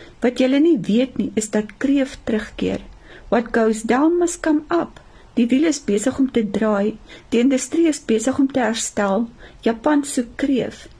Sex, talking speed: female, 175 wpm